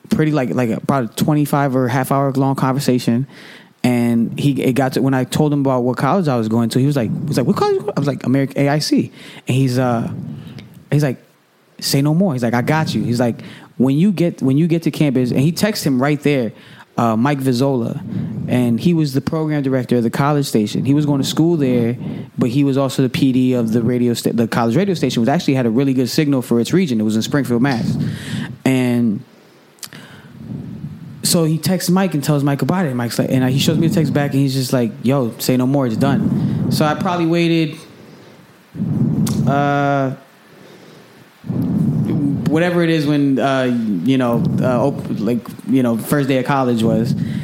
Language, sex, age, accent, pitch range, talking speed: English, male, 20-39, American, 125-155 Hz, 220 wpm